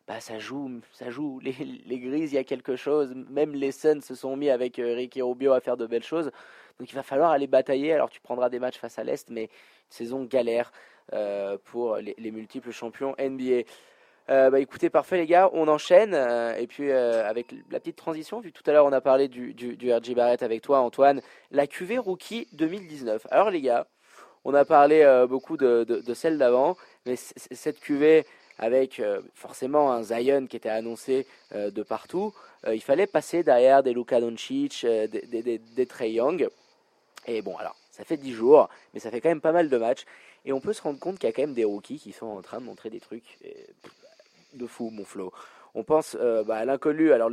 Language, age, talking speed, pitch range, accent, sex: French, 20-39, 225 wpm, 120-155 Hz, French, male